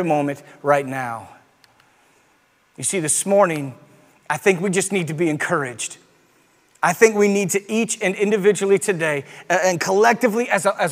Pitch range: 185-240 Hz